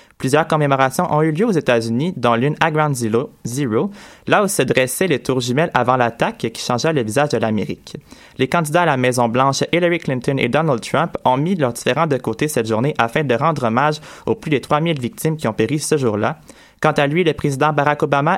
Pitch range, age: 125-160 Hz, 20-39